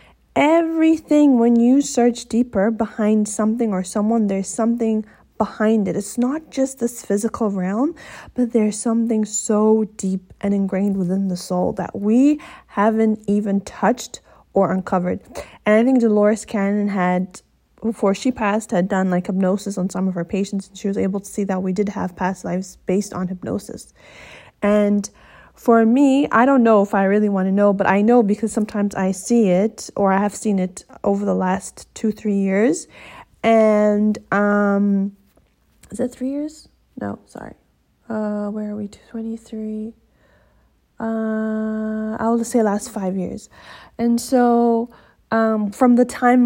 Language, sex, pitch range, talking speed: English, female, 200-230 Hz, 160 wpm